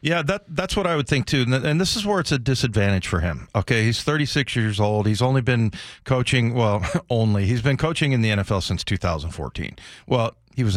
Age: 50-69